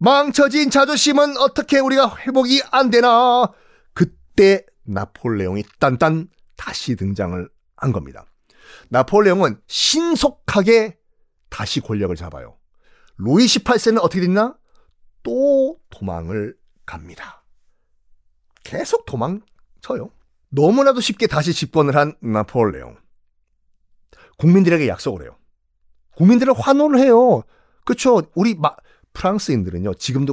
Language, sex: Korean, male